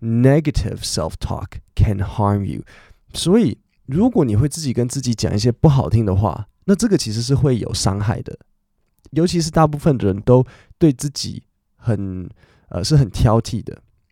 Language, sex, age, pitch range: Chinese, male, 20-39, 100-130 Hz